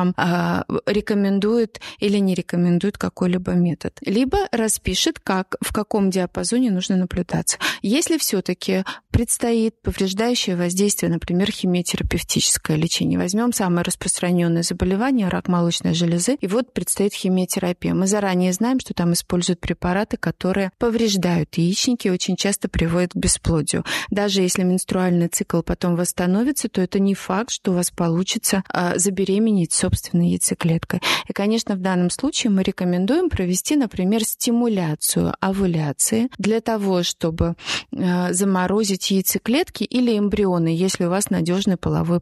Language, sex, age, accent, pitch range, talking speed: Russian, female, 30-49, native, 180-215 Hz, 125 wpm